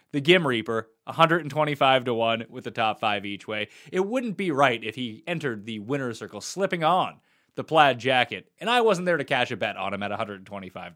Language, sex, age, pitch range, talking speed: English, male, 20-39, 115-170 Hz, 215 wpm